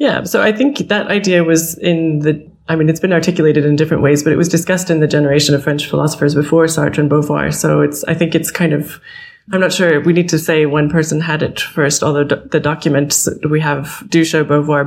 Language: English